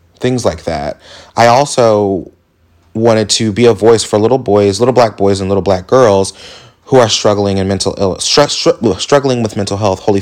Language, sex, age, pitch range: English, male, 30-49, 95-110 Hz